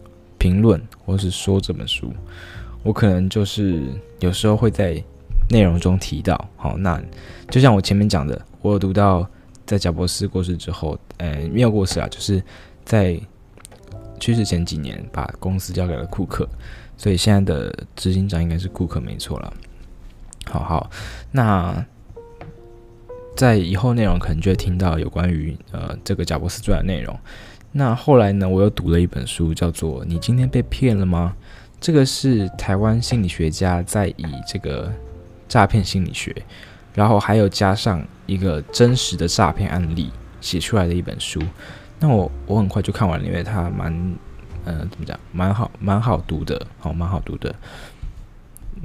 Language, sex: Chinese, male